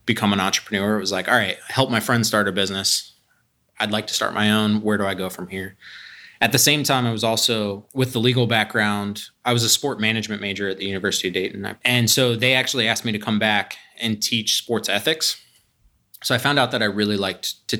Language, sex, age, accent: English, male, 20-39, American